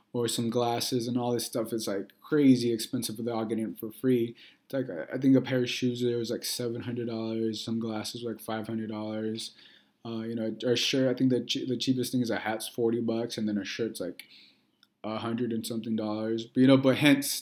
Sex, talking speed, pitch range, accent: male, 235 wpm, 110-125 Hz, American